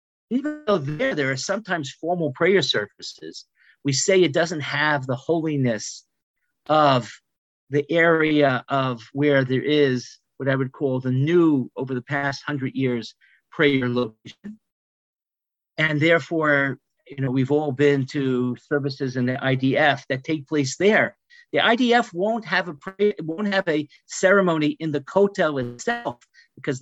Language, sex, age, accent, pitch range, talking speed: English, male, 50-69, American, 135-175 Hz, 150 wpm